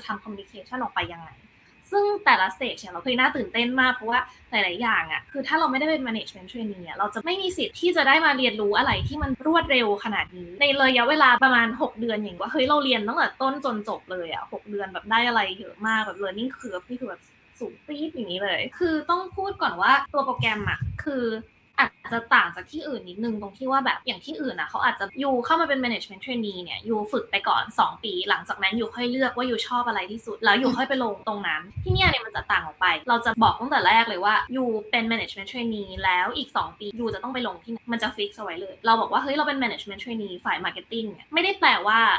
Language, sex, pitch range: Thai, female, 210-270 Hz